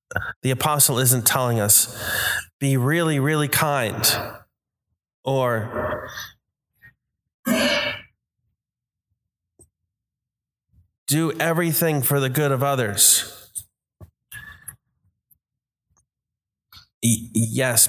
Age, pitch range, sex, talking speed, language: 20-39, 110-135 Hz, male, 60 wpm, English